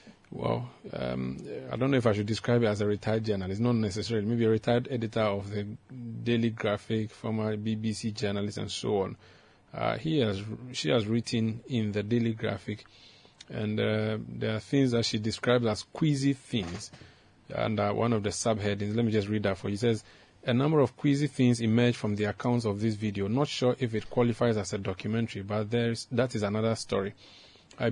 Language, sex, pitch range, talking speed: English, male, 105-125 Hz, 195 wpm